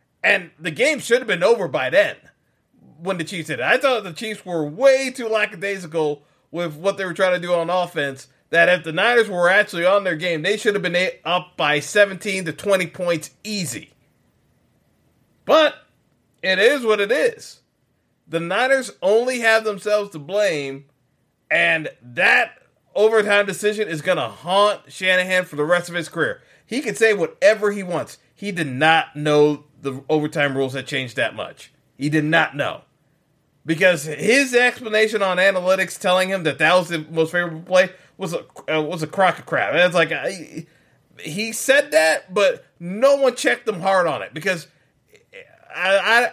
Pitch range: 155-210 Hz